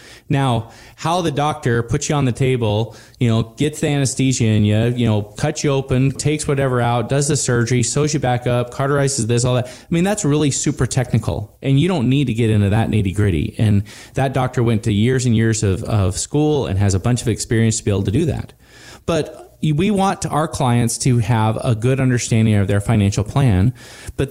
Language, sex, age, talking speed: English, male, 20-39, 220 wpm